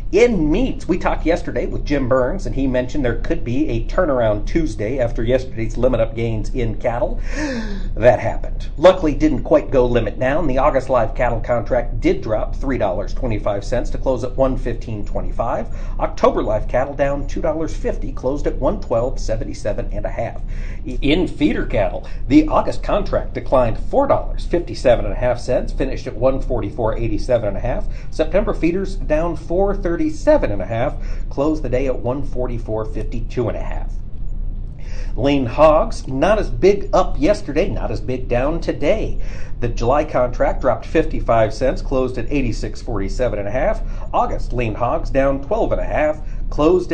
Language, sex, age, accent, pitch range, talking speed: English, male, 50-69, American, 110-150 Hz, 180 wpm